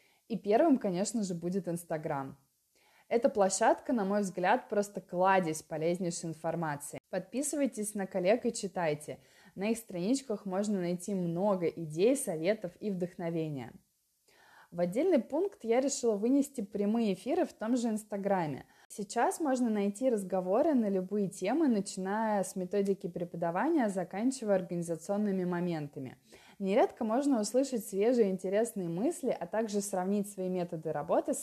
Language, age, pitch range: Russian, 20-39, 175-230 Hz